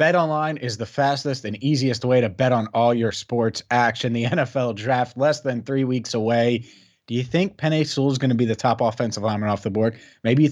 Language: English